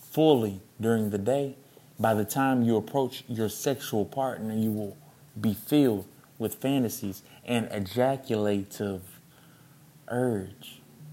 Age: 20-39